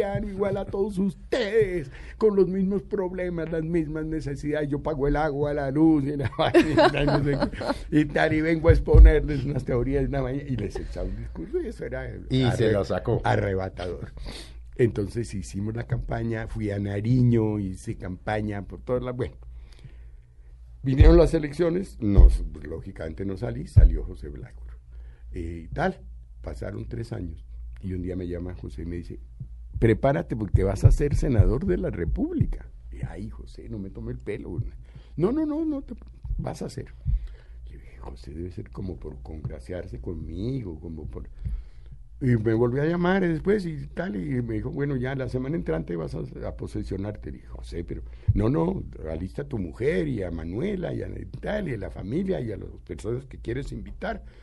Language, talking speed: Spanish, 175 wpm